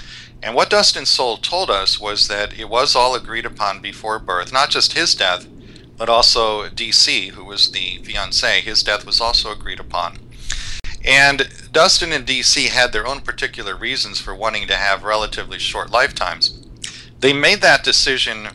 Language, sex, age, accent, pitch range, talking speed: English, male, 40-59, American, 105-125 Hz, 170 wpm